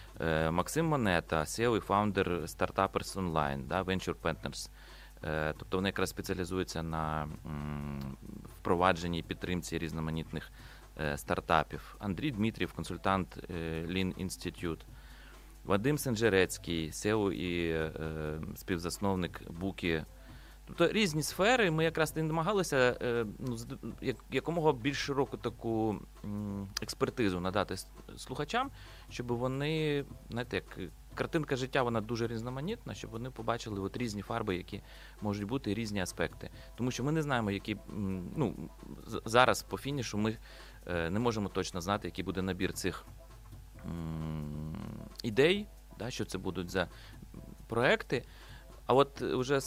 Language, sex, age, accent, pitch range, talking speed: Ukrainian, male, 30-49, native, 90-120 Hz, 115 wpm